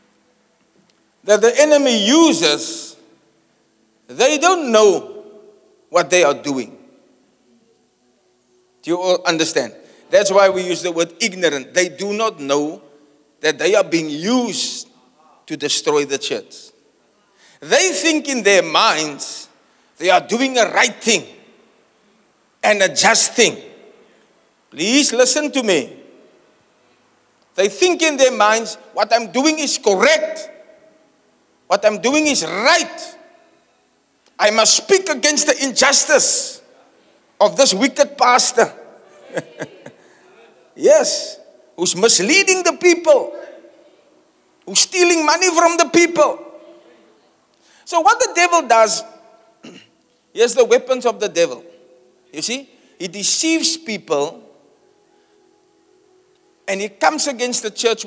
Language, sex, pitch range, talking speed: English, male, 210-335 Hz, 115 wpm